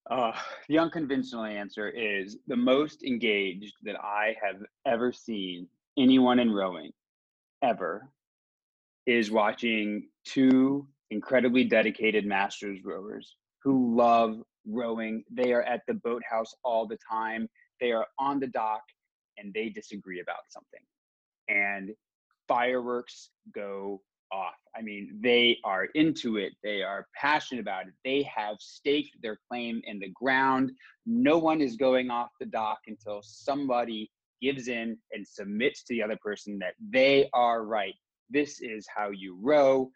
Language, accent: English, American